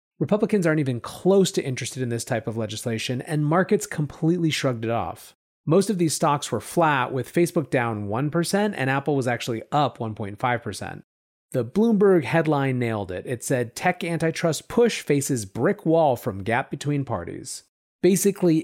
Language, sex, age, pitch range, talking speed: English, male, 30-49, 120-165 Hz, 165 wpm